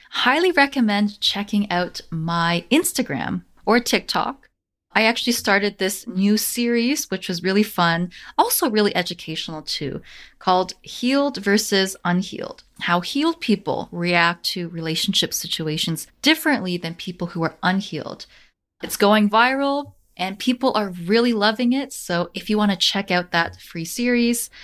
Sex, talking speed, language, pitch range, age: female, 140 wpm, English, 175-240 Hz, 20-39